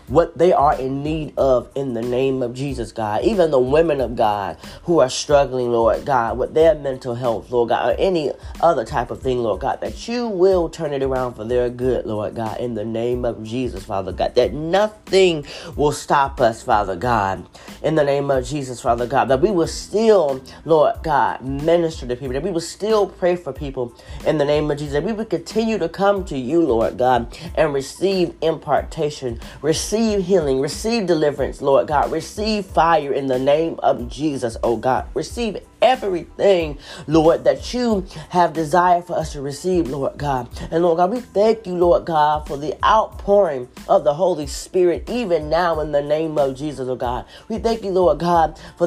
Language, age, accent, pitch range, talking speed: English, 30-49, American, 130-175 Hz, 200 wpm